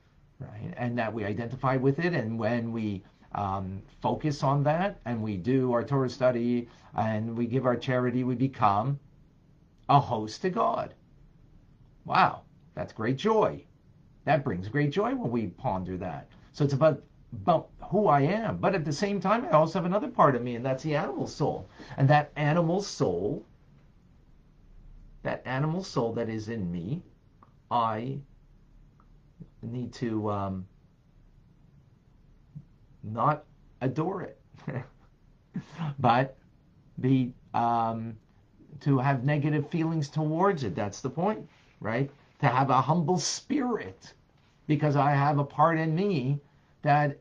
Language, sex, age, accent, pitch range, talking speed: English, male, 50-69, American, 120-150 Hz, 140 wpm